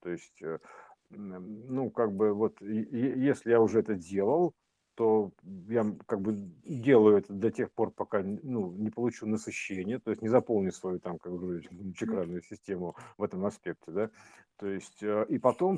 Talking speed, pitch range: 160 wpm, 100-130 Hz